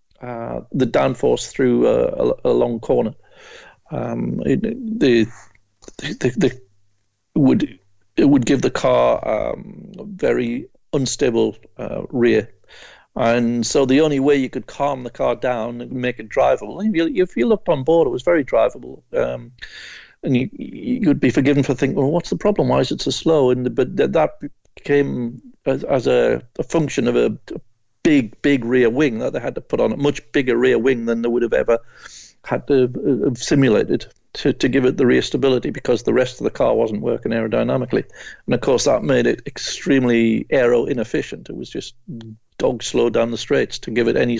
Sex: male